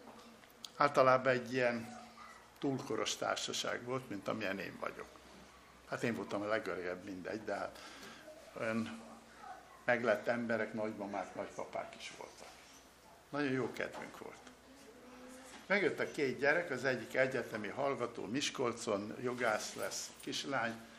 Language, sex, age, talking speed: Hungarian, male, 60-79, 115 wpm